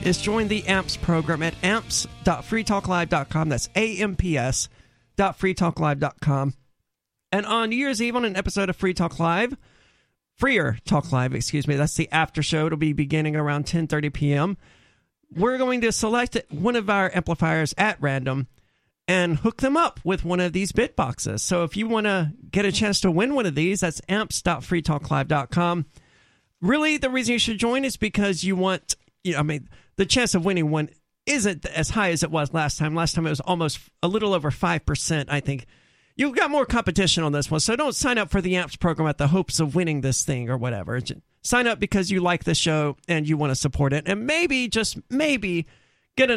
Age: 40-59